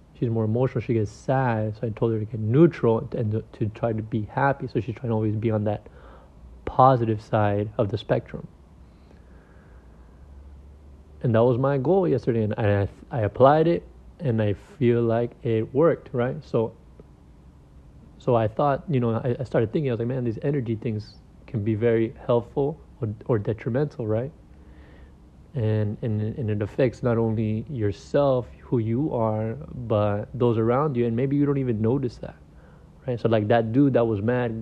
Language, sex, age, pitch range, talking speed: English, male, 30-49, 105-125 Hz, 180 wpm